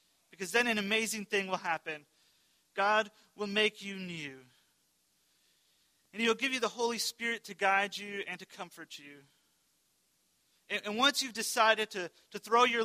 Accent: American